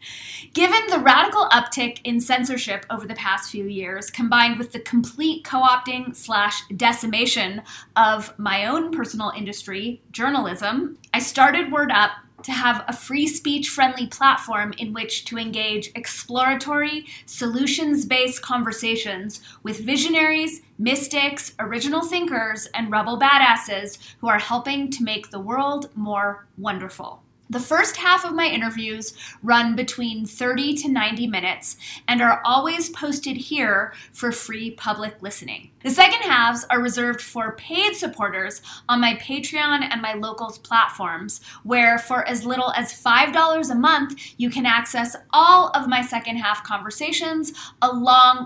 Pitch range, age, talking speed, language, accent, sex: 220-280 Hz, 30-49, 135 wpm, English, American, female